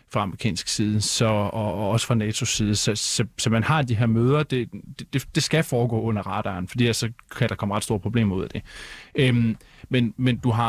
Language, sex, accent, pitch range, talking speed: Danish, male, native, 105-130 Hz, 200 wpm